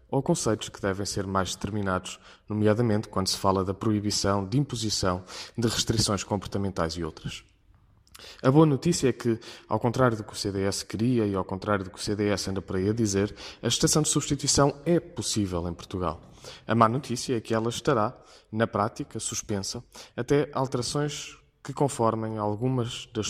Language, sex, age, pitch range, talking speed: Portuguese, male, 20-39, 100-120 Hz, 175 wpm